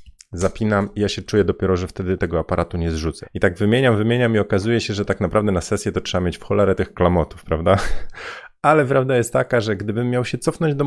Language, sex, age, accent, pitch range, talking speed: Polish, male, 30-49, native, 85-110 Hz, 230 wpm